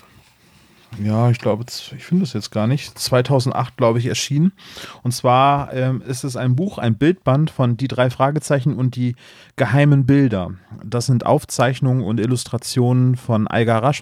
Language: German